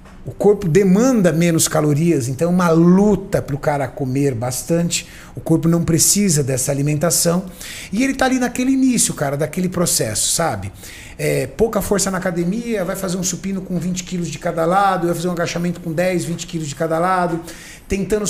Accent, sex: Brazilian, male